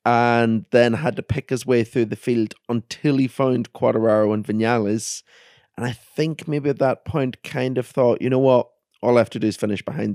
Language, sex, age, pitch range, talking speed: English, male, 30-49, 110-130 Hz, 220 wpm